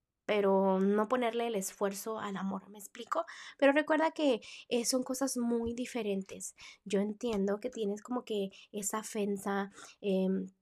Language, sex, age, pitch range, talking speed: Spanish, female, 20-39, 190-235 Hz, 140 wpm